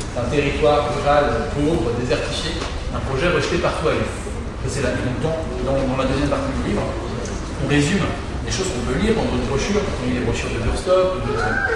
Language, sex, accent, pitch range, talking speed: French, male, French, 110-140 Hz, 180 wpm